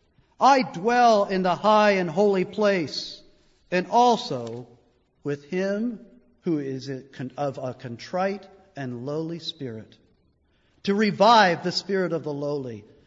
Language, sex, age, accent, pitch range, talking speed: English, male, 50-69, American, 130-190 Hz, 125 wpm